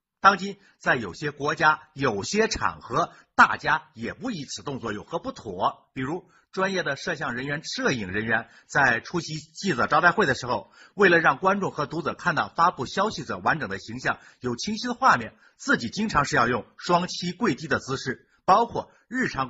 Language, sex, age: Chinese, male, 50-69